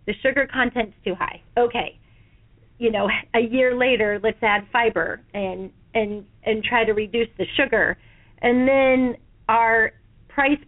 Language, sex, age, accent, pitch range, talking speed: English, female, 40-59, American, 210-255 Hz, 145 wpm